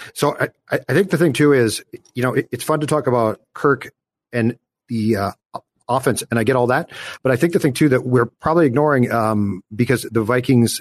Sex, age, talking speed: male, 40-59, 220 wpm